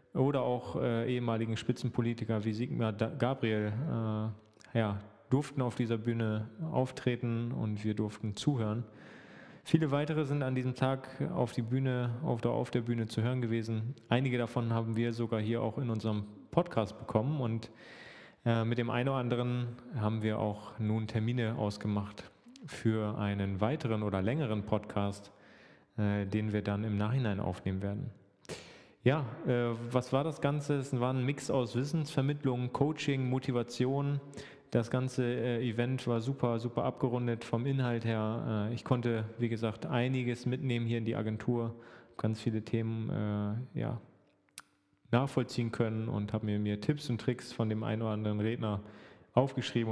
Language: German